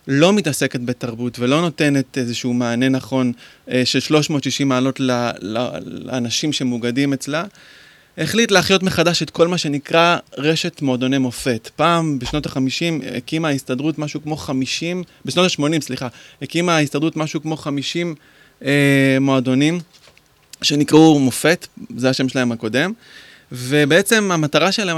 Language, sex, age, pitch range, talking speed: Hebrew, male, 20-39, 130-160 Hz, 130 wpm